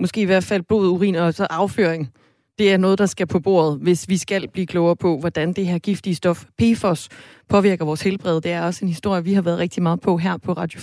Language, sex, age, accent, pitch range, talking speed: Danish, female, 30-49, native, 170-210 Hz, 250 wpm